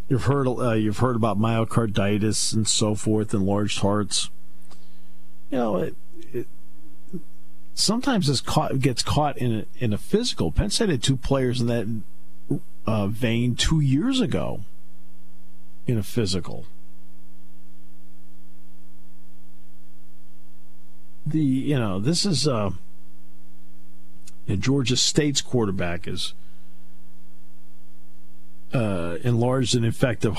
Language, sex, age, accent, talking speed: English, male, 50-69, American, 115 wpm